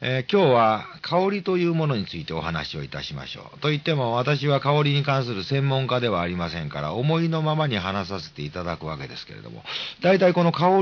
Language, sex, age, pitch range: Japanese, male, 40-59, 95-155 Hz